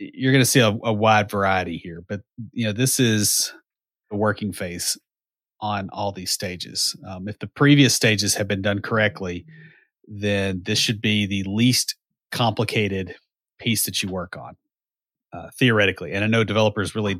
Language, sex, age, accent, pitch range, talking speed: English, male, 30-49, American, 95-115 Hz, 170 wpm